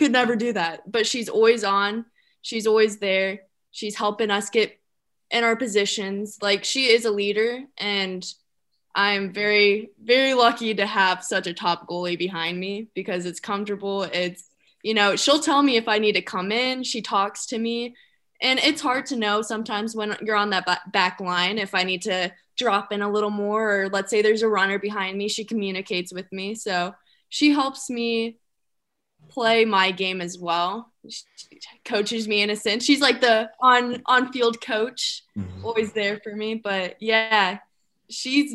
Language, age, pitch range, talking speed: English, 20-39, 195-235 Hz, 185 wpm